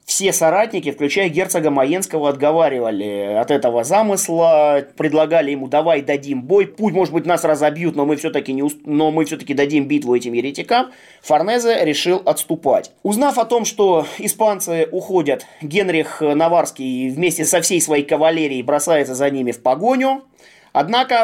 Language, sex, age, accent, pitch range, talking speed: Russian, male, 20-39, native, 135-185 Hz, 140 wpm